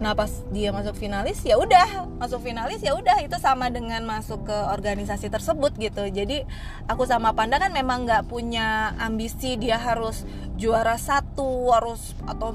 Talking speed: 160 wpm